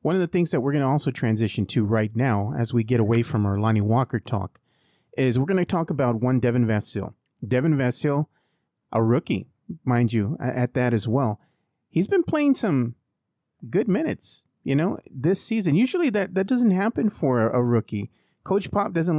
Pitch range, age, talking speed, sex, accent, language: 120-155 Hz, 40-59, 195 wpm, male, American, English